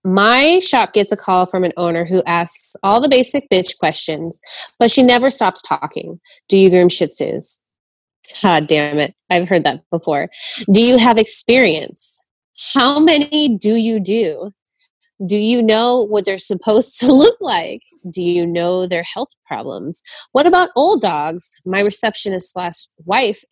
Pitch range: 175-235 Hz